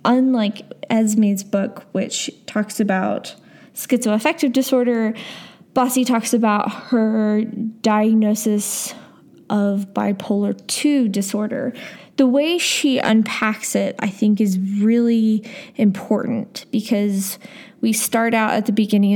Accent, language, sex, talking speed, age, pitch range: American, English, female, 105 wpm, 20-39, 200-235 Hz